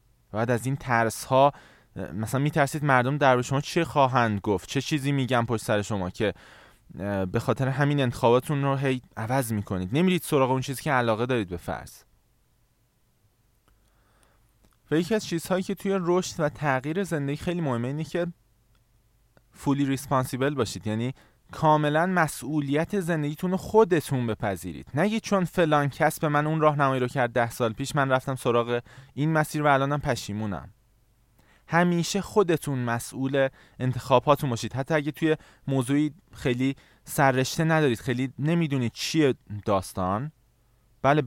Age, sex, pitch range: 20-39, male, 115-150 Hz